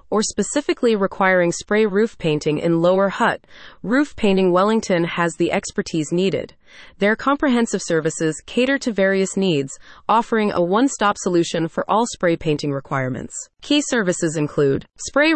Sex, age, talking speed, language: female, 30-49, 140 wpm, English